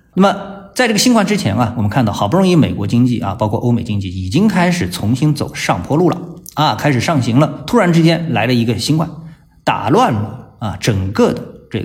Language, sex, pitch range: Chinese, male, 110-145 Hz